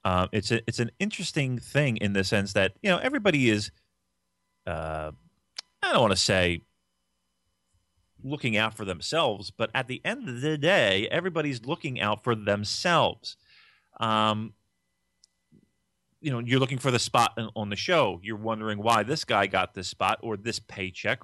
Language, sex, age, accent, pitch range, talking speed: English, male, 30-49, American, 90-120 Hz, 165 wpm